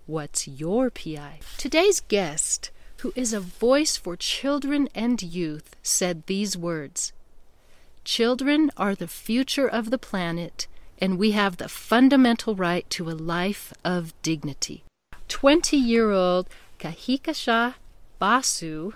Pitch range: 175-245 Hz